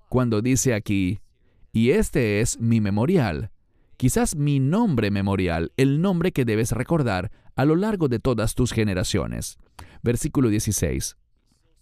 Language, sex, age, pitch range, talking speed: English, male, 40-59, 100-140 Hz, 130 wpm